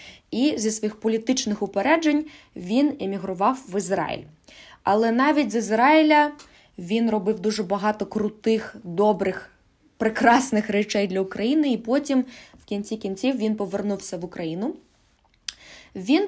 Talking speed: 120 wpm